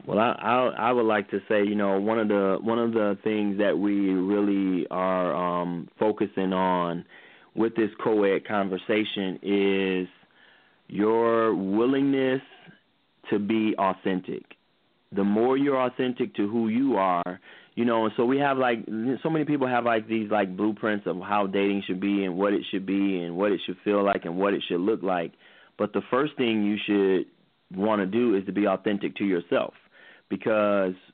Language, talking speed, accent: English, 185 wpm, American